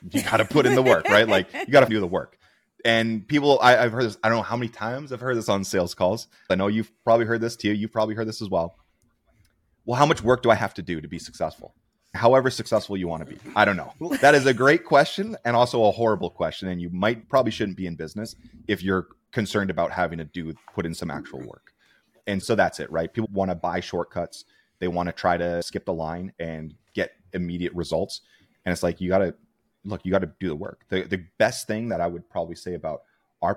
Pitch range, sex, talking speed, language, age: 85-110 Hz, male, 255 wpm, English, 30-49